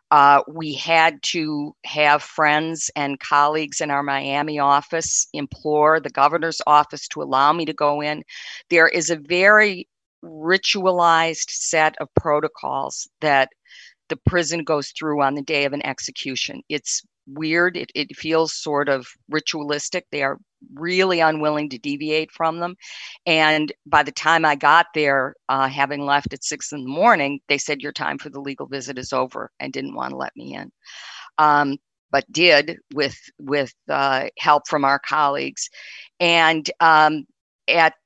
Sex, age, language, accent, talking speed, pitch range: female, 50-69, English, American, 160 wpm, 140-170 Hz